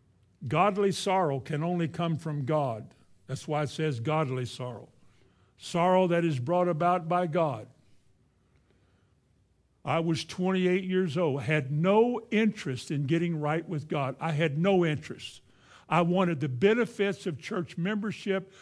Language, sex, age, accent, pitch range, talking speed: English, male, 60-79, American, 150-195 Hz, 140 wpm